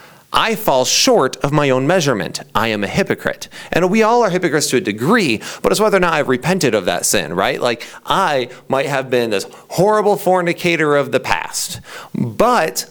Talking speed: 195 wpm